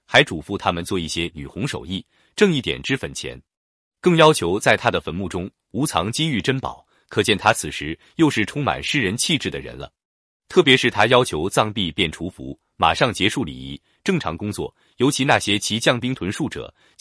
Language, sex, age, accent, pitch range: Chinese, male, 30-49, native, 85-145 Hz